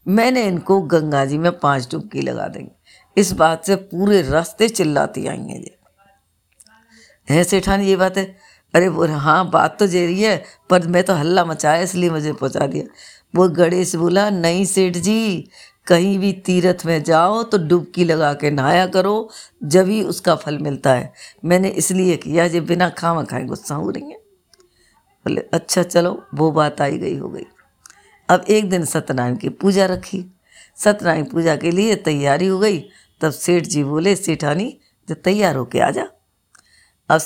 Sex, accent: female, native